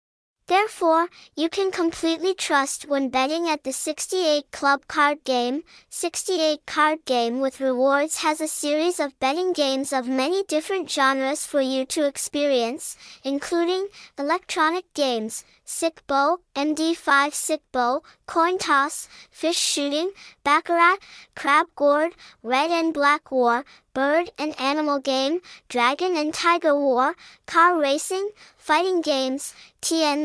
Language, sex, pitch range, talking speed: English, male, 270-335 Hz, 125 wpm